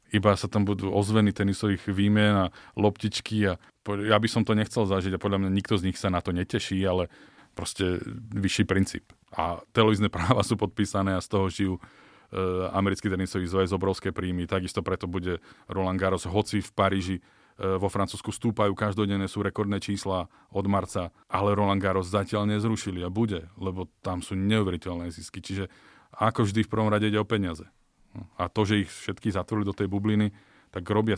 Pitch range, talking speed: 95-105 Hz, 185 wpm